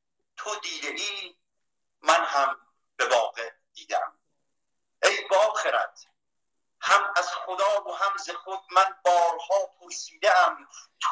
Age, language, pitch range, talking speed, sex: 50-69, Persian, 165-200 Hz, 105 wpm, male